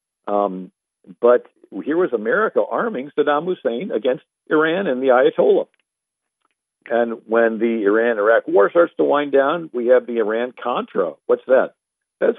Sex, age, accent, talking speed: male, 50-69, American, 145 wpm